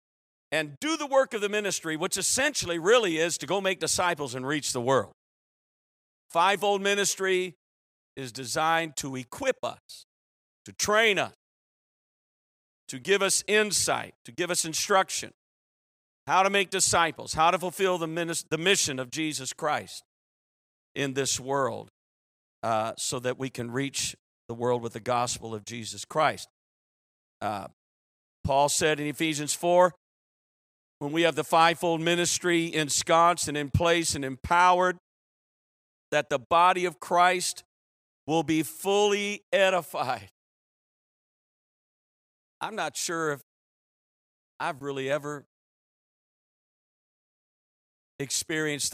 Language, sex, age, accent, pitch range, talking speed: English, male, 50-69, American, 135-185 Hz, 125 wpm